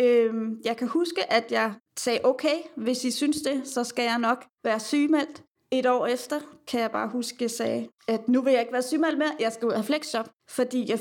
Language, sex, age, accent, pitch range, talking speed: Danish, female, 30-49, native, 225-260 Hz, 235 wpm